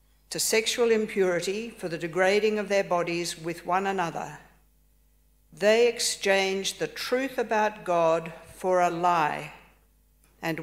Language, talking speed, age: English, 120 wpm, 50-69